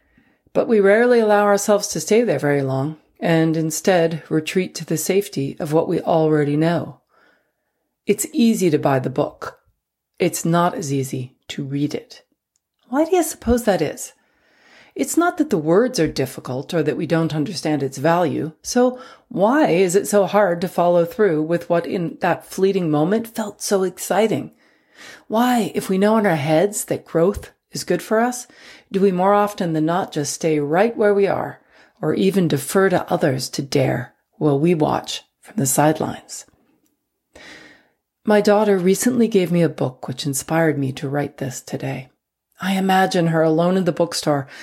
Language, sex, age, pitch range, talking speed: English, female, 40-59, 155-200 Hz, 175 wpm